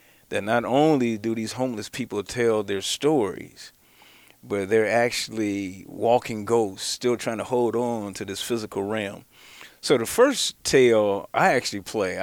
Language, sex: English, male